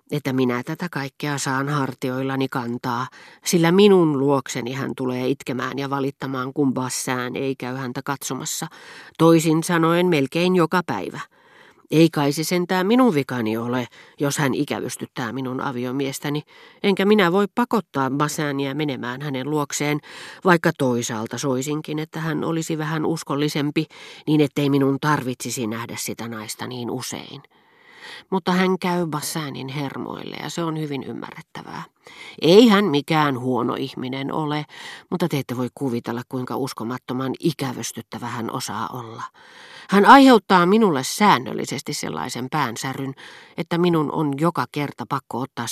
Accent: native